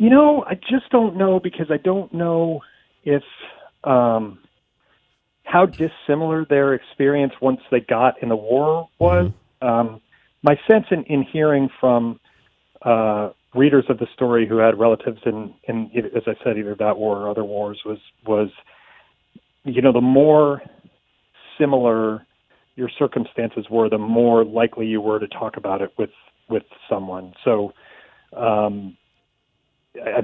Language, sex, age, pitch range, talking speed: English, male, 40-59, 105-140 Hz, 150 wpm